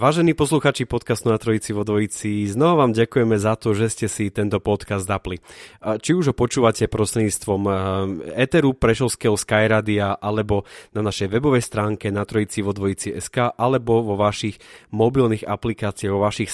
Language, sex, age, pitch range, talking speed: Slovak, male, 30-49, 100-115 Hz, 150 wpm